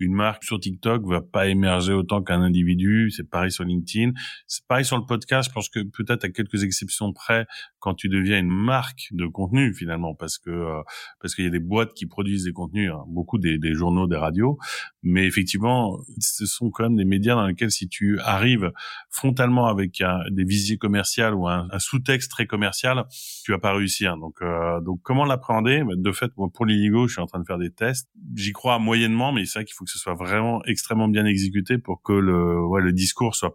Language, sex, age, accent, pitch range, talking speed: French, male, 30-49, French, 90-115 Hz, 225 wpm